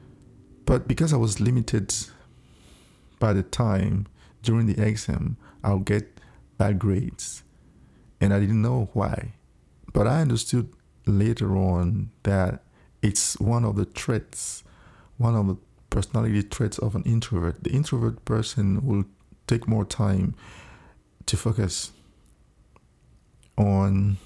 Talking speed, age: 120 wpm, 50-69